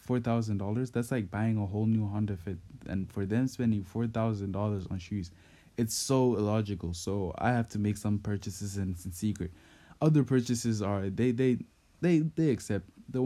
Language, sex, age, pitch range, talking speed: English, male, 20-39, 95-115 Hz, 195 wpm